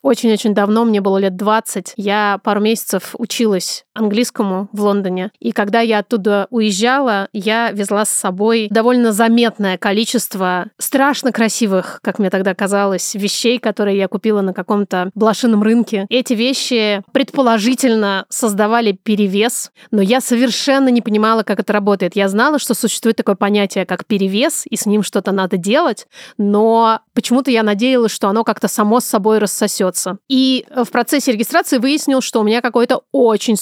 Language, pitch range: Russian, 205-240 Hz